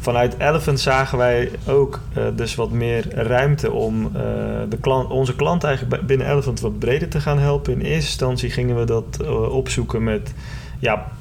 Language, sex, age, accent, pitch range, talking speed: Dutch, male, 20-39, Dutch, 110-135 Hz, 180 wpm